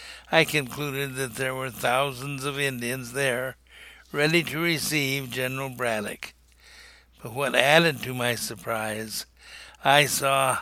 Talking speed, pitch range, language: 125 wpm, 120-150 Hz, English